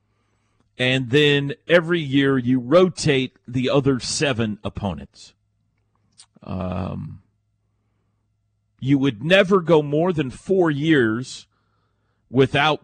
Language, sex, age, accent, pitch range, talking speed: English, male, 40-59, American, 105-140 Hz, 95 wpm